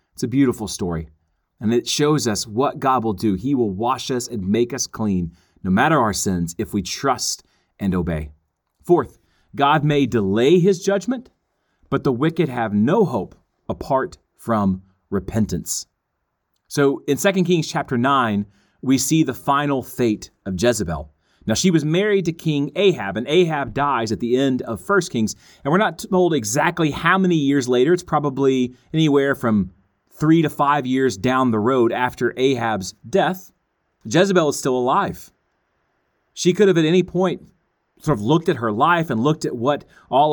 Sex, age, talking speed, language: male, 30-49, 175 wpm, English